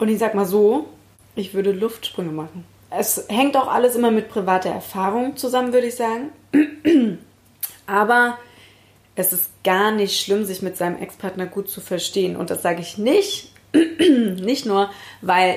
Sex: female